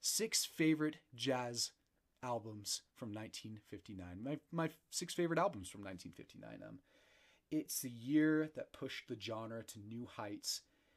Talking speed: 130 wpm